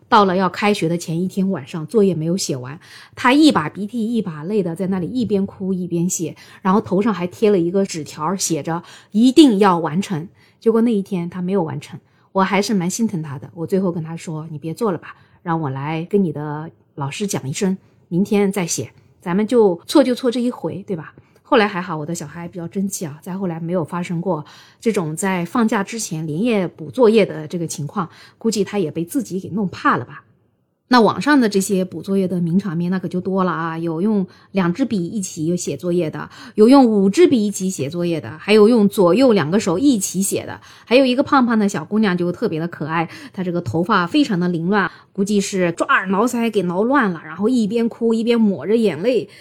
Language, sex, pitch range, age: Chinese, female, 165-210 Hz, 20-39